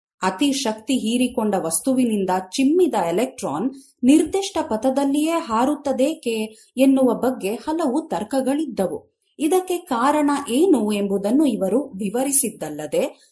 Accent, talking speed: native, 85 wpm